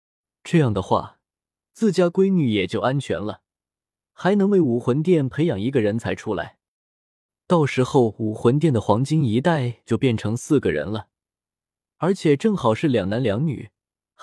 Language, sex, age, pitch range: Chinese, male, 20-39, 110-160 Hz